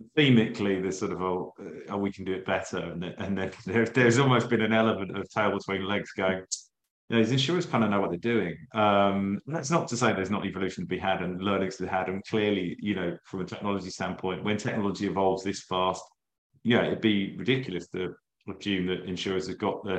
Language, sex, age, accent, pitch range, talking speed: English, male, 30-49, British, 95-110 Hz, 230 wpm